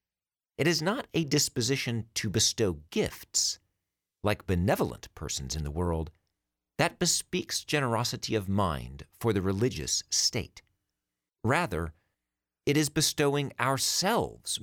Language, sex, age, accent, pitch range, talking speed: English, male, 50-69, American, 90-140 Hz, 115 wpm